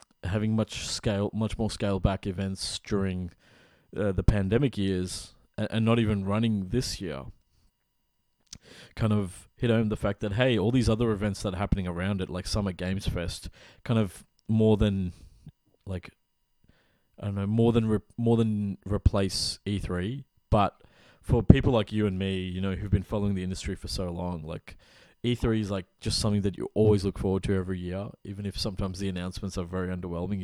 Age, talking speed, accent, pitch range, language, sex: 20-39, 185 wpm, Australian, 95-110 Hz, English, male